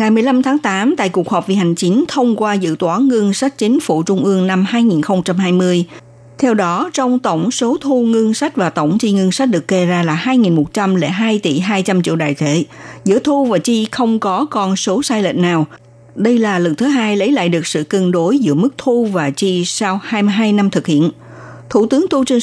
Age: 60-79